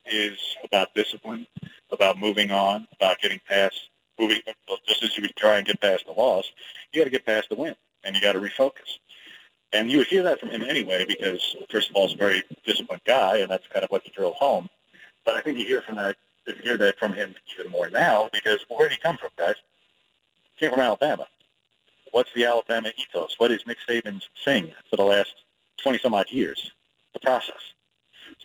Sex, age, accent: male, 40-59, American